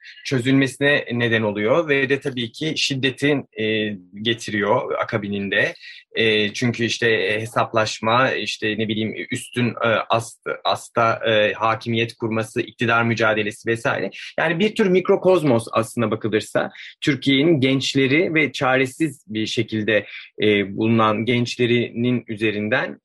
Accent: native